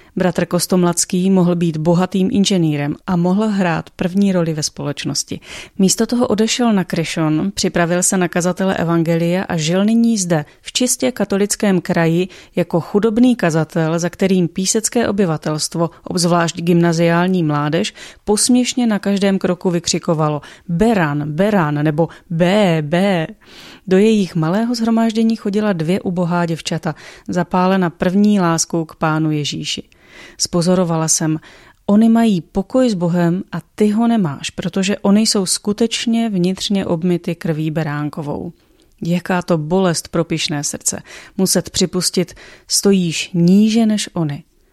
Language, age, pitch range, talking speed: Czech, 30-49, 165-200 Hz, 130 wpm